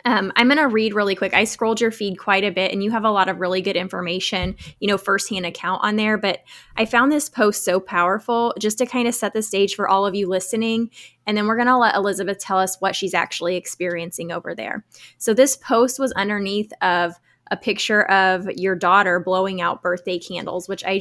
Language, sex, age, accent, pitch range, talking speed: English, female, 10-29, American, 190-220 Hz, 230 wpm